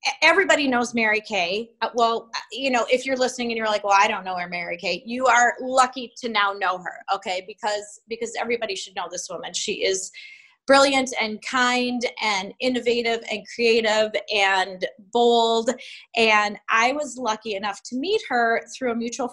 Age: 20-39